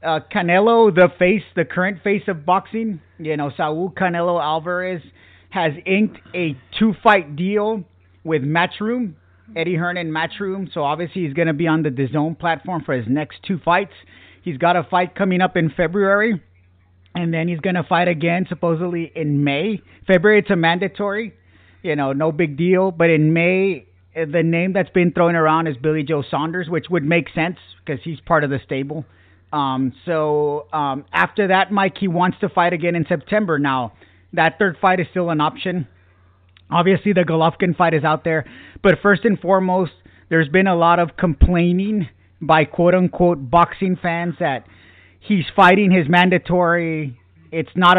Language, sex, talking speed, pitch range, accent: English, male, 175 wpm, 145-180 Hz, American